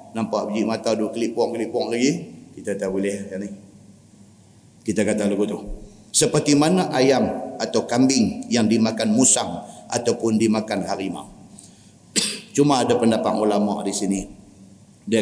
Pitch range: 110-135 Hz